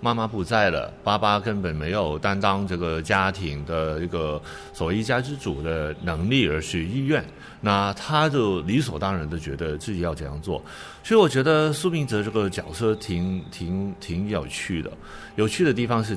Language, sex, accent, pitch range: Chinese, male, native, 90-130 Hz